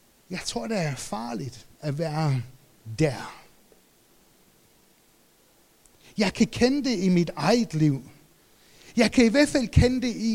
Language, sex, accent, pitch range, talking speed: Danish, male, German, 140-210 Hz, 140 wpm